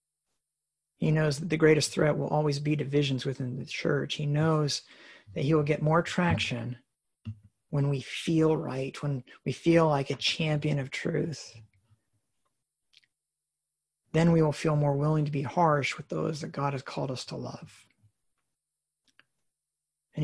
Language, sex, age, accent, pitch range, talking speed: English, male, 40-59, American, 140-165 Hz, 155 wpm